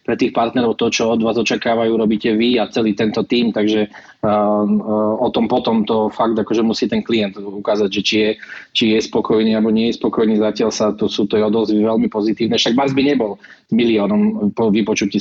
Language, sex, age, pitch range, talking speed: Slovak, male, 20-39, 105-115 Hz, 205 wpm